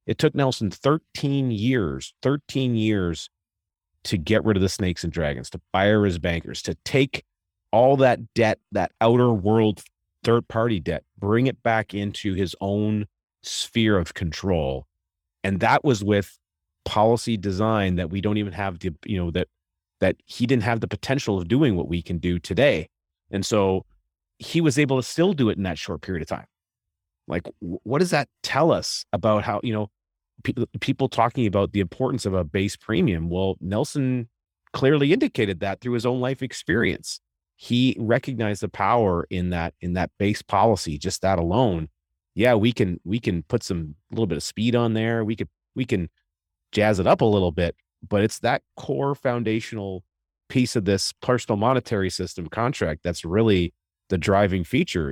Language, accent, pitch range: English, American, 85-115 Hz